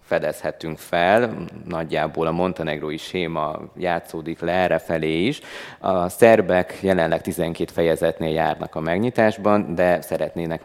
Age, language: 20-39, Hungarian